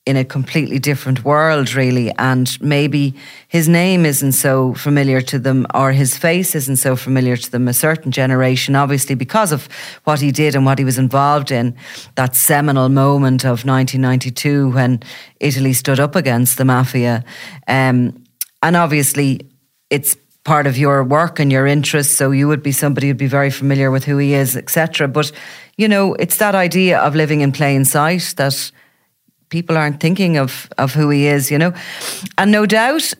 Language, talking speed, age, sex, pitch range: English, 180 wpm, 30-49, female, 130-155 Hz